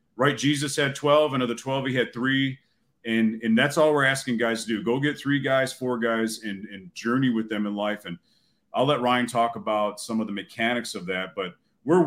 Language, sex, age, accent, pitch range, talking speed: English, male, 40-59, American, 105-130 Hz, 235 wpm